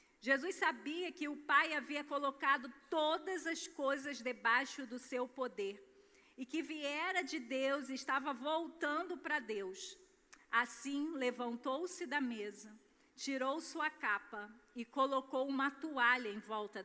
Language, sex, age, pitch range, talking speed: Portuguese, female, 40-59, 220-300 Hz, 130 wpm